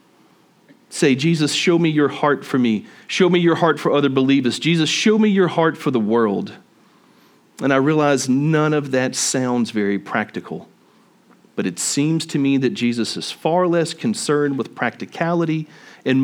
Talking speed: 170 wpm